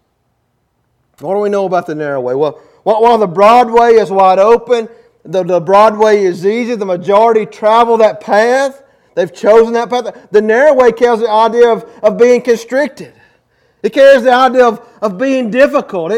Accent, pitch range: American, 200-245 Hz